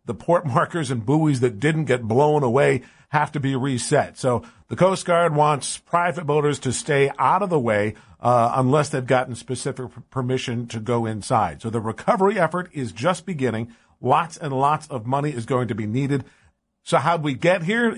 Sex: male